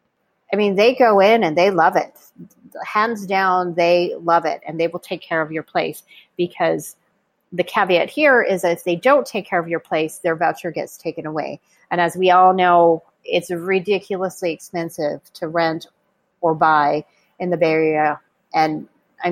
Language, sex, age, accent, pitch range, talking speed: English, female, 30-49, American, 165-200 Hz, 185 wpm